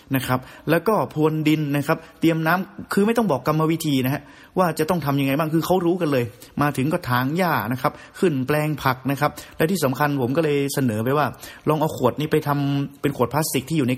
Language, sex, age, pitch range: Thai, male, 30-49, 130-155 Hz